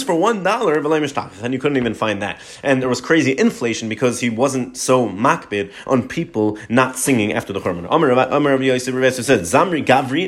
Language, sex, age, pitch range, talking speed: English, male, 30-49, 120-155 Hz, 170 wpm